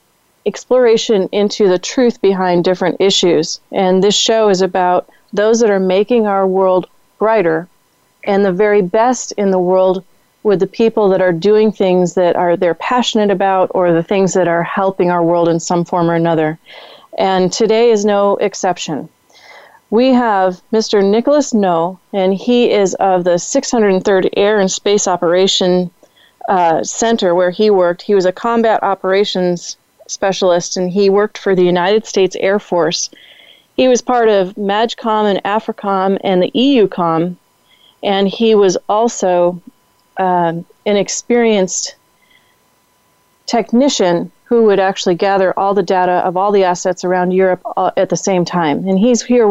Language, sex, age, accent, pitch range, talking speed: English, female, 30-49, American, 180-215 Hz, 160 wpm